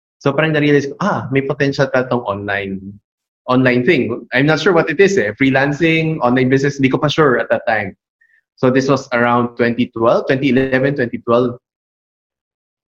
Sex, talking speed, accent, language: male, 160 wpm, Filipino, English